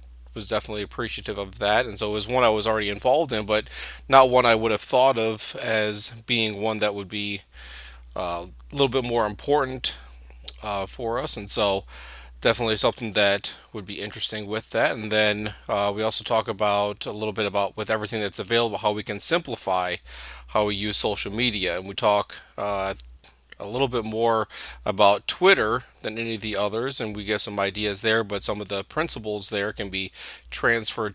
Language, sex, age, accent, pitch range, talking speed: English, male, 30-49, American, 100-110 Hz, 200 wpm